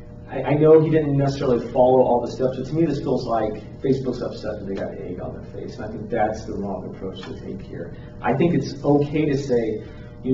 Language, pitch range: English, 115-145 Hz